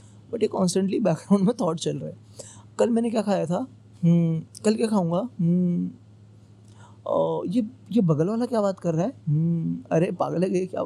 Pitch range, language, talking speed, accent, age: 105-175 Hz, Hindi, 170 wpm, native, 20-39